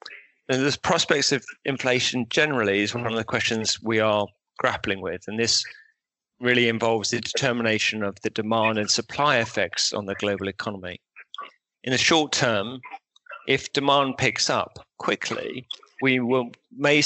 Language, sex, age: English, male, 40-59